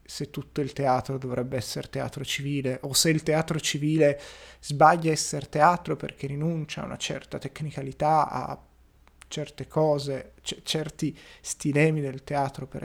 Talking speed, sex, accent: 145 wpm, male, native